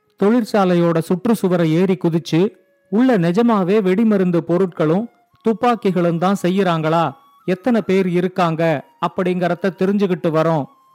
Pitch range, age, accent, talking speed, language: 175-210 Hz, 40-59, native, 65 wpm, Tamil